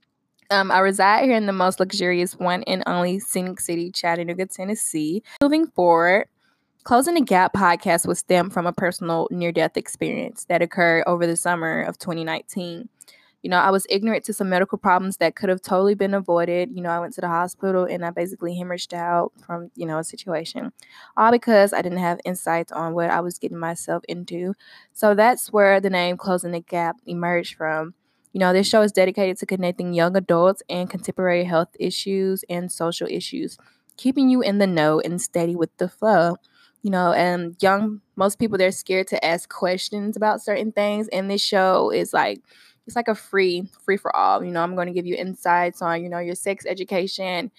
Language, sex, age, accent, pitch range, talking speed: English, female, 10-29, American, 175-200 Hz, 200 wpm